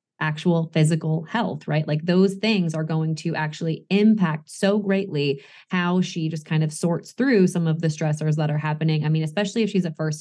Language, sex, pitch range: English, female, 160-190 Hz